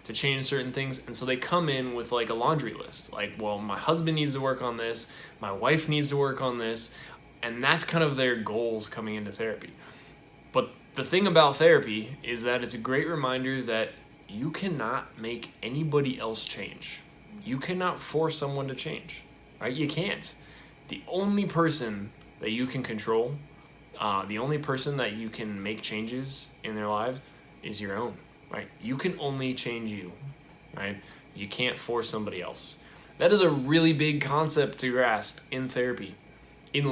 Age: 10-29